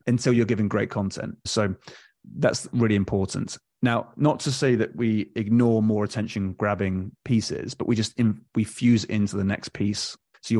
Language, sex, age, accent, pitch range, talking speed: English, male, 30-49, British, 100-120 Hz, 175 wpm